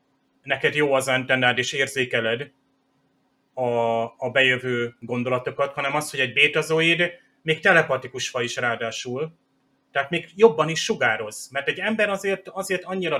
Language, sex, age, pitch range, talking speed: Hungarian, male, 30-49, 120-145 Hz, 140 wpm